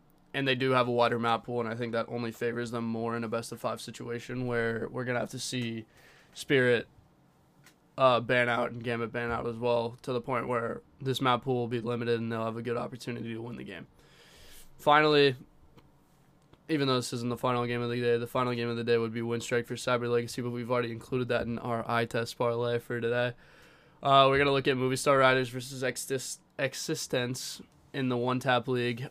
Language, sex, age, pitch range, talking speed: English, male, 20-39, 120-130 Hz, 230 wpm